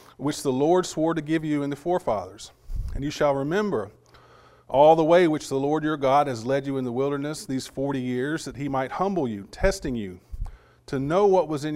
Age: 40-59